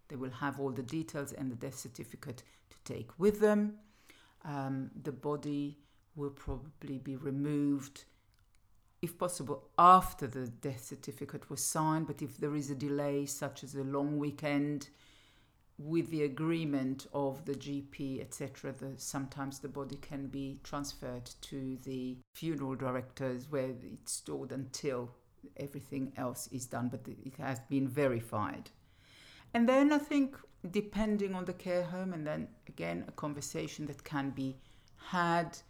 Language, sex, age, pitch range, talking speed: English, female, 50-69, 130-155 Hz, 150 wpm